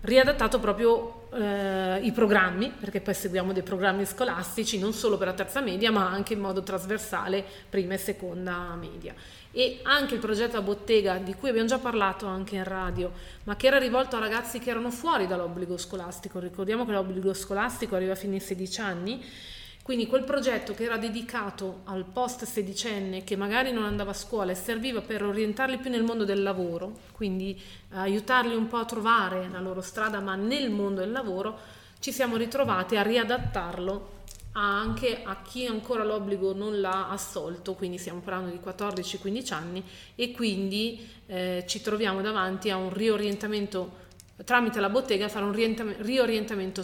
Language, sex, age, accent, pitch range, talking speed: Italian, female, 30-49, native, 190-230 Hz, 170 wpm